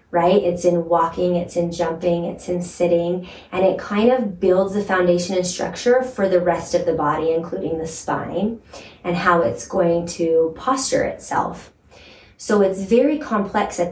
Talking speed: 175 wpm